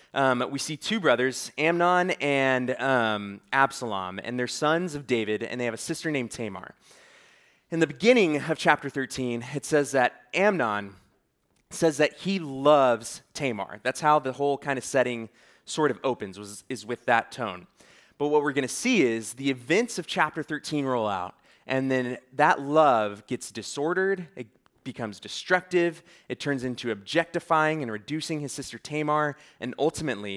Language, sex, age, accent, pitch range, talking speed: English, male, 20-39, American, 115-150 Hz, 165 wpm